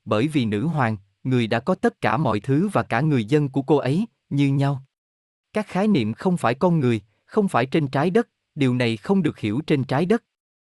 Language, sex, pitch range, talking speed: Vietnamese, male, 115-165 Hz, 225 wpm